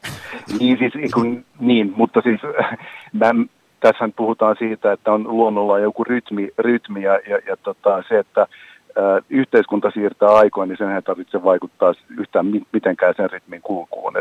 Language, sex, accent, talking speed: Finnish, male, native, 150 wpm